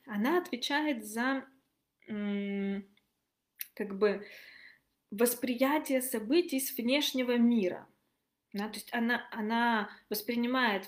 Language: Russian